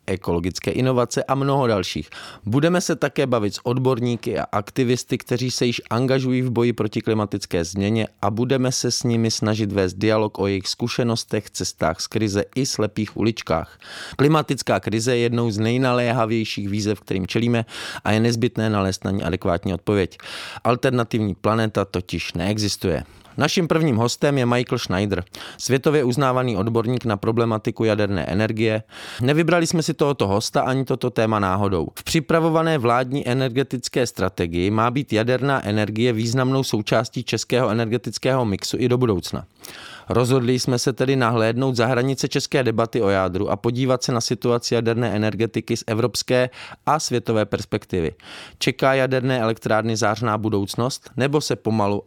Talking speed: 150 wpm